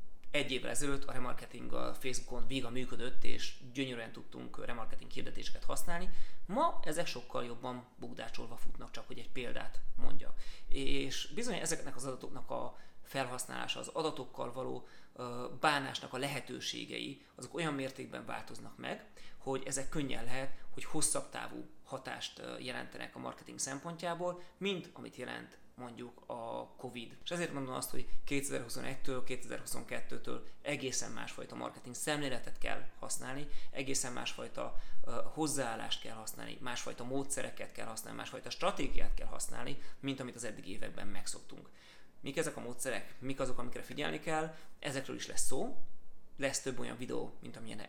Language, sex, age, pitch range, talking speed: Hungarian, male, 30-49, 120-140 Hz, 145 wpm